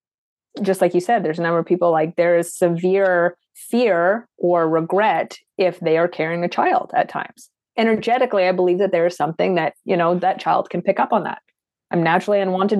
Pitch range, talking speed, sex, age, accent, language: 175-205 Hz, 205 wpm, female, 30-49, American, English